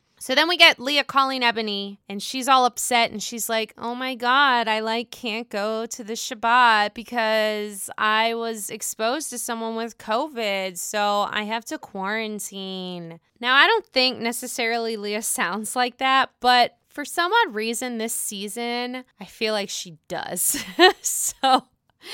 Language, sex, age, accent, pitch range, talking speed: English, female, 20-39, American, 200-255 Hz, 160 wpm